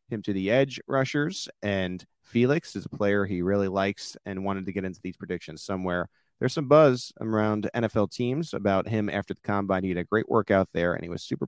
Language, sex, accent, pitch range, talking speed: English, male, American, 90-110 Hz, 220 wpm